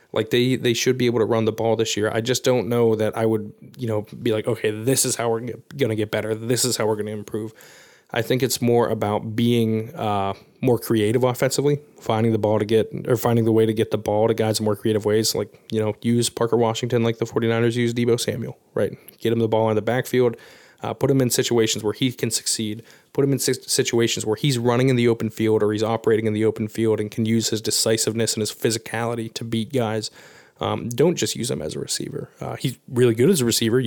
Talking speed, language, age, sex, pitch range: 250 wpm, English, 20-39, male, 110-120 Hz